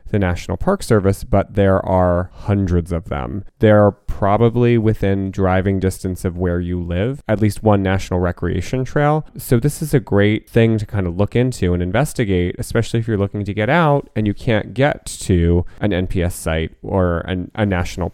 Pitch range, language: 90-110 Hz, English